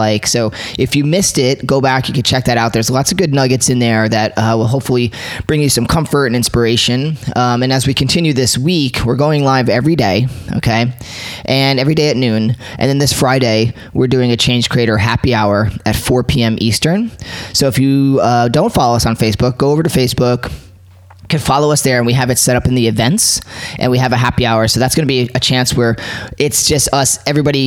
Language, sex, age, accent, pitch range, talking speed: English, male, 20-39, American, 115-135 Hz, 230 wpm